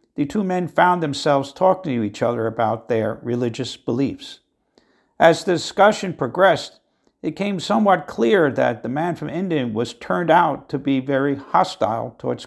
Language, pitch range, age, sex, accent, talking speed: English, 125-165 Hz, 60-79, male, American, 165 wpm